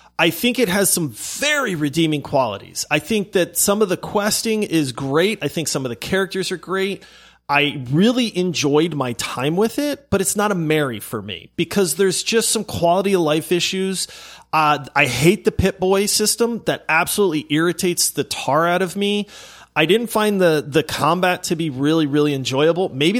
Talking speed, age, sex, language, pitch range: 190 wpm, 30-49, male, English, 145-195 Hz